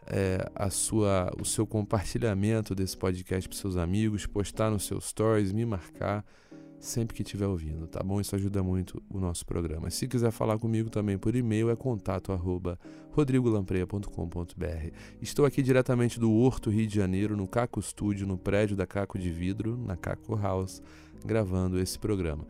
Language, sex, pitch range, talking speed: Portuguese, male, 95-110 Hz, 170 wpm